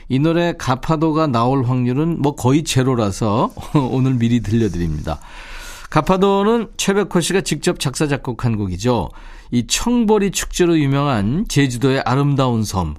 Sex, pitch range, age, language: male, 115-165 Hz, 40-59, Korean